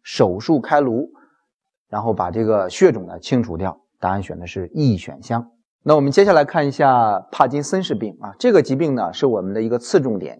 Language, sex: Chinese, male